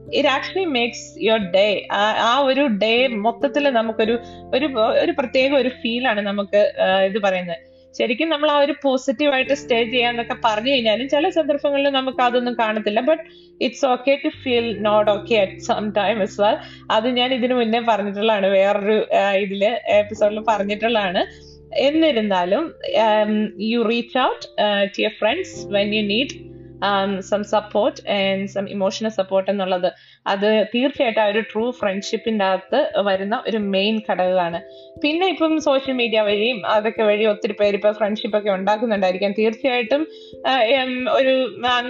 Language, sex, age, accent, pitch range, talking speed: Malayalam, female, 20-39, native, 205-260 Hz, 145 wpm